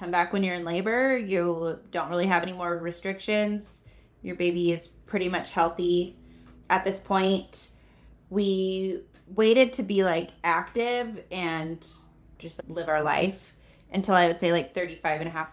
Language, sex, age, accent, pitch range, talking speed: English, female, 20-39, American, 160-190 Hz, 160 wpm